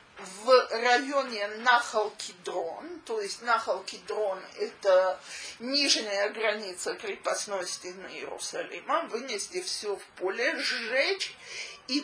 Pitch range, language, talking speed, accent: 210-285 Hz, Russian, 90 wpm, native